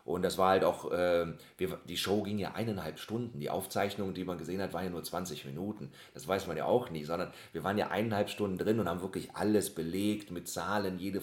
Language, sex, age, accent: German, male, 40-59, German